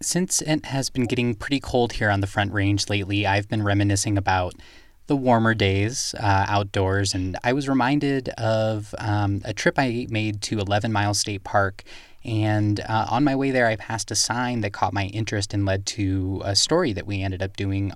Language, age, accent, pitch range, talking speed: English, 20-39, American, 100-120 Hz, 205 wpm